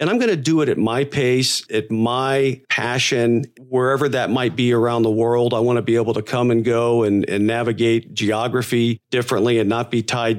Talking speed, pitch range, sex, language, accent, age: 215 wpm, 115-135 Hz, male, English, American, 40-59